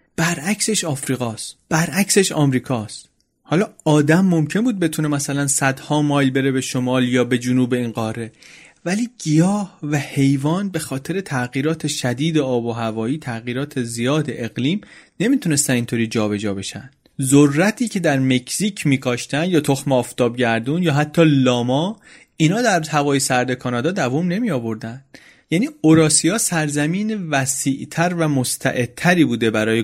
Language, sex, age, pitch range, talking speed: Persian, male, 30-49, 120-160 Hz, 135 wpm